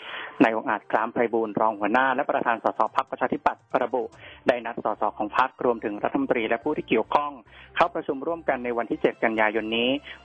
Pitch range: 110-135 Hz